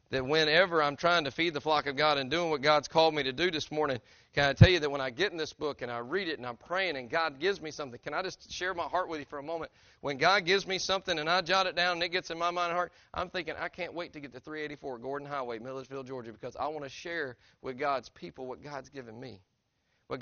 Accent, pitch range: American, 135-175 Hz